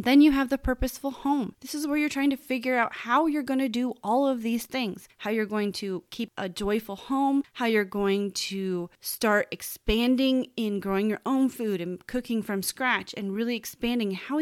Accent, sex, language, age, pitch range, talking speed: American, female, English, 30-49, 195-255 Hz, 210 wpm